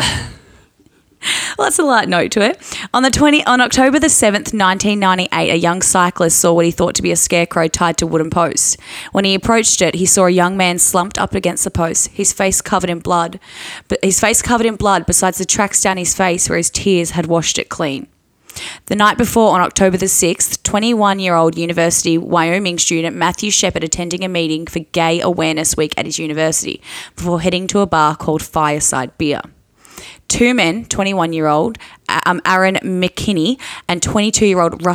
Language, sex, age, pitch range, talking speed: English, female, 10-29, 170-200 Hz, 185 wpm